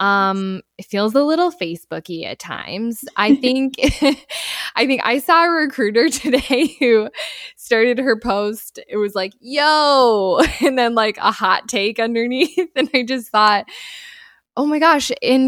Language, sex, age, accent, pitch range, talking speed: English, female, 10-29, American, 200-270 Hz, 155 wpm